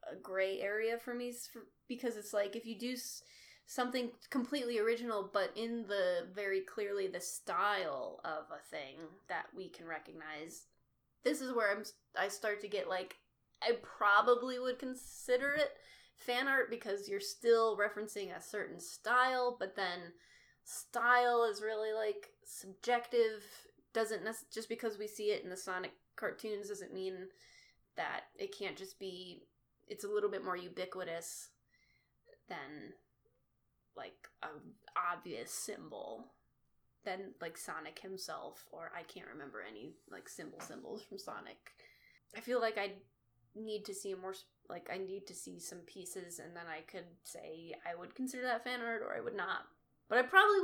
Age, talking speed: 20-39, 155 wpm